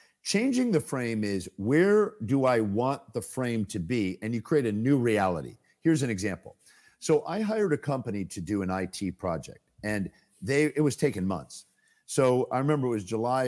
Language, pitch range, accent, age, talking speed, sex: English, 105-150 Hz, American, 50-69, 190 wpm, male